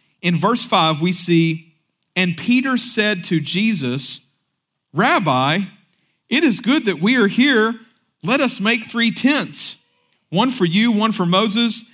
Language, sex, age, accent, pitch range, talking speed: English, male, 50-69, American, 150-230 Hz, 145 wpm